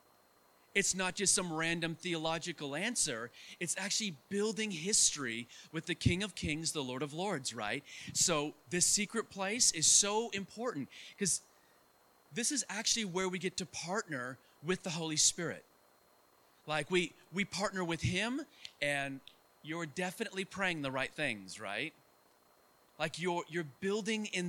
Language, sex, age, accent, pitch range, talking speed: English, male, 30-49, American, 155-205 Hz, 145 wpm